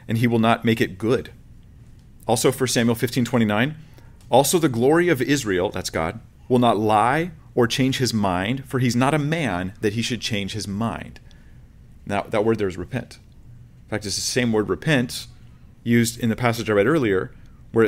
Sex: male